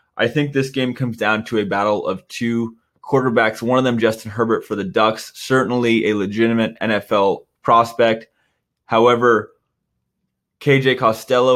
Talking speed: 145 wpm